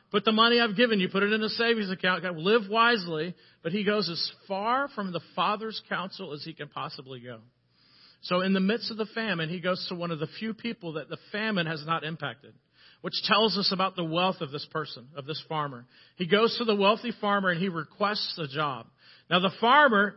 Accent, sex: American, male